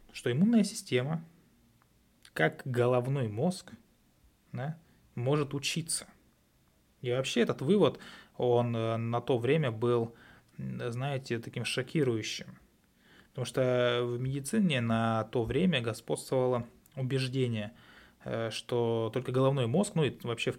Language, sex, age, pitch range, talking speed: Russian, male, 20-39, 115-135 Hz, 110 wpm